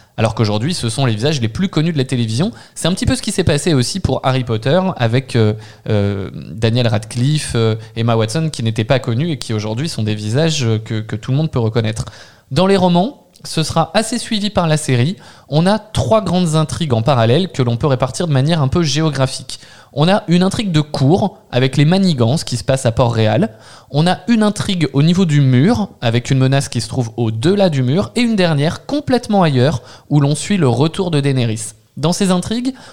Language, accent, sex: French, French, male